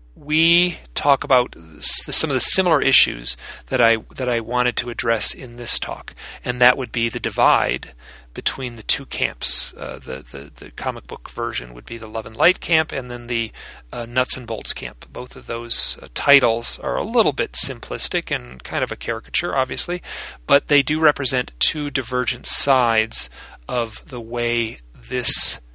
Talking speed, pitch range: 180 wpm, 110-125 Hz